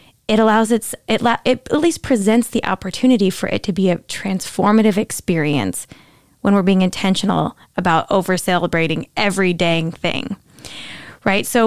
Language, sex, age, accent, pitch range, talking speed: English, female, 10-29, American, 180-225 Hz, 145 wpm